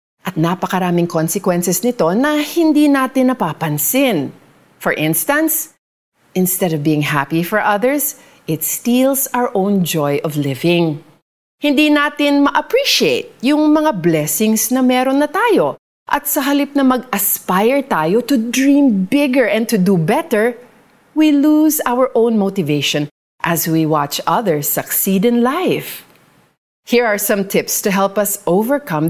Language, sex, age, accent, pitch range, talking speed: Filipino, female, 40-59, native, 170-275 Hz, 135 wpm